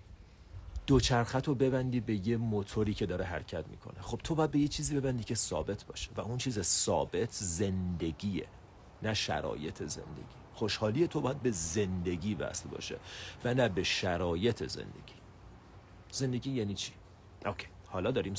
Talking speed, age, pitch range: 145 wpm, 40-59, 90-115 Hz